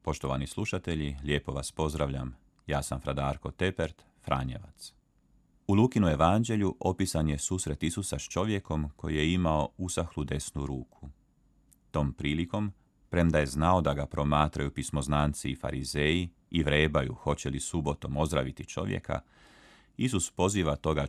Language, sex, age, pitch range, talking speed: Croatian, male, 40-59, 70-90 Hz, 130 wpm